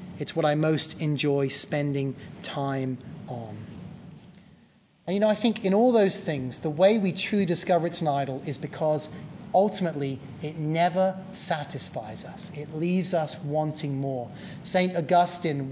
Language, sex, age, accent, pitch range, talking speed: English, male, 30-49, British, 150-185 Hz, 150 wpm